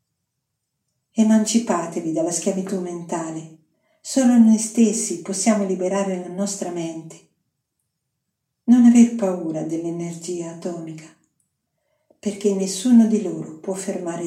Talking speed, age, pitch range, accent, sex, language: 95 wpm, 50-69, 170-205 Hz, native, female, Italian